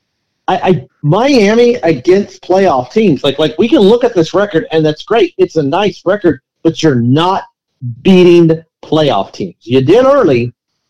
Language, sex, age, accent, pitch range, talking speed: English, male, 40-59, American, 140-185 Hz, 165 wpm